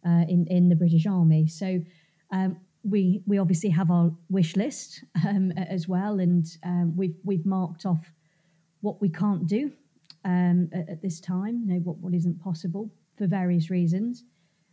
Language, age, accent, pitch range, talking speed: English, 30-49, British, 165-195 Hz, 170 wpm